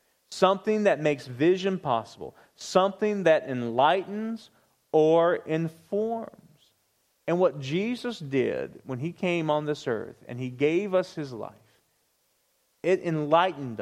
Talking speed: 120 wpm